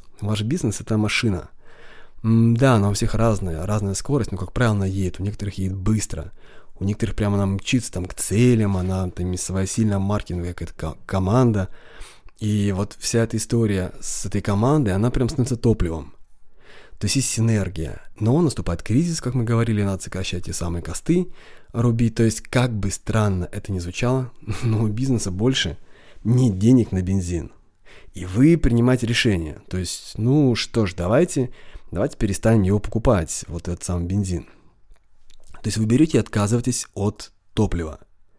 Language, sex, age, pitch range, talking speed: Russian, male, 20-39, 95-120 Hz, 165 wpm